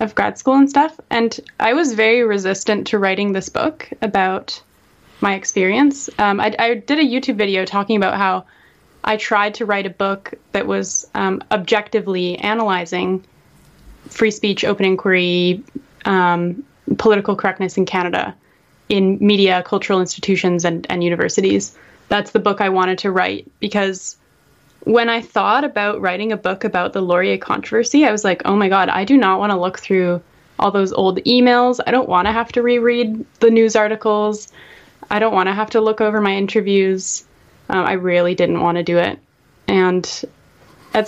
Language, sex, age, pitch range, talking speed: English, female, 20-39, 185-220 Hz, 175 wpm